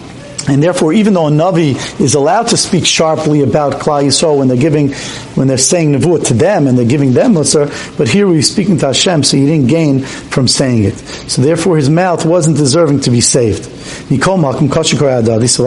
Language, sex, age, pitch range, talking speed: English, male, 50-69, 140-185 Hz, 200 wpm